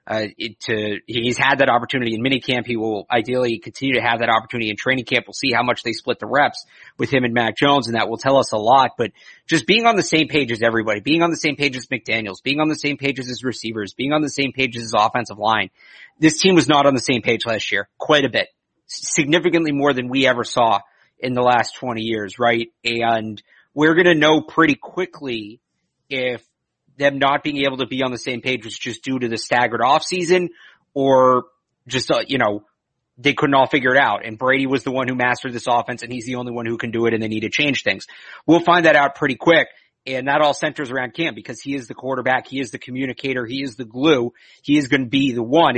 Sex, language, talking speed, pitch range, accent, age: male, English, 250 wpm, 120-145 Hz, American, 30-49